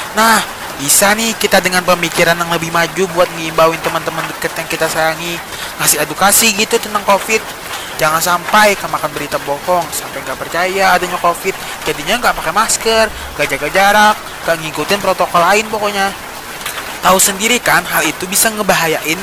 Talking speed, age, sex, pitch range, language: 155 wpm, 20-39, male, 165-195 Hz, Indonesian